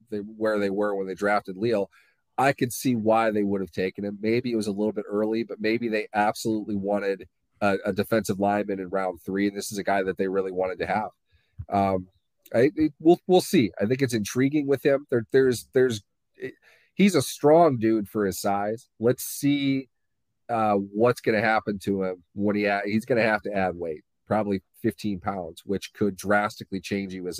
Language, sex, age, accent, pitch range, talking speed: English, male, 40-59, American, 95-115 Hz, 210 wpm